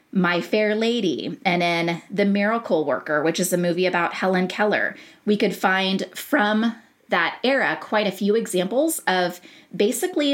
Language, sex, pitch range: English, female, 175-225 Hz